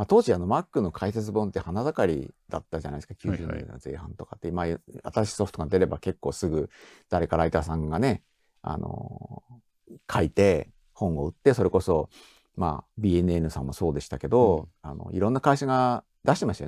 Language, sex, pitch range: Japanese, male, 80-110 Hz